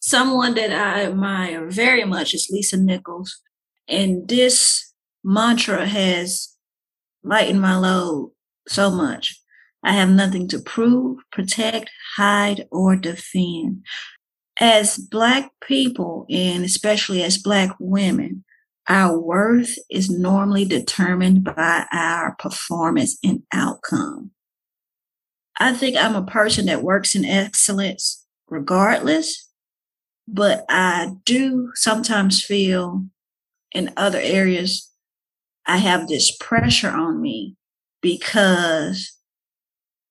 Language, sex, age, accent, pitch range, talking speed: English, female, 40-59, American, 185-230 Hz, 105 wpm